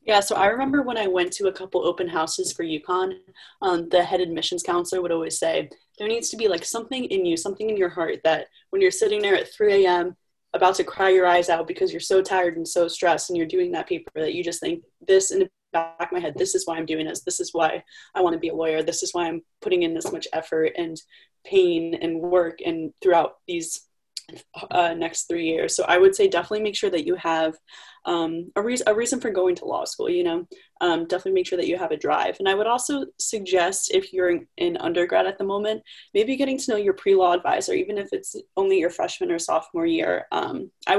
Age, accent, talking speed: 20-39, American, 245 wpm